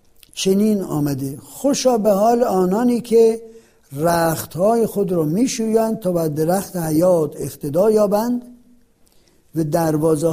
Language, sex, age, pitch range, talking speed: Persian, male, 60-79, 155-210 Hz, 110 wpm